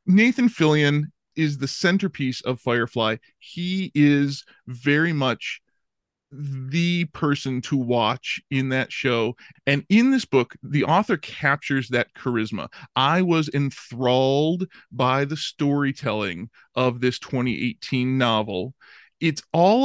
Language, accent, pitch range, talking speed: English, American, 130-175 Hz, 120 wpm